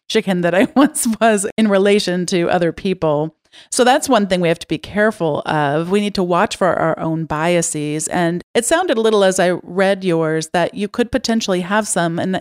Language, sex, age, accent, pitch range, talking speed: English, female, 40-59, American, 160-195 Hz, 215 wpm